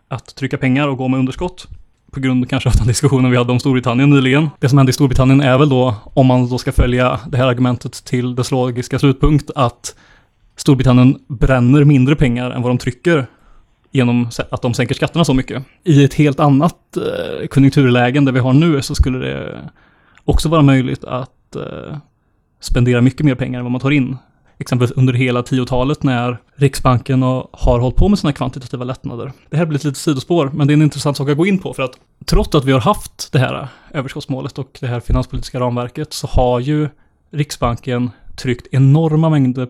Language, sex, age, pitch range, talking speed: Swedish, male, 20-39, 125-145 Hz, 195 wpm